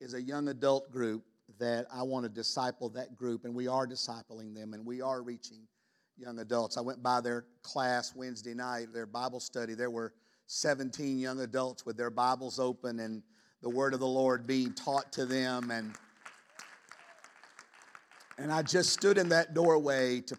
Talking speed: 180 wpm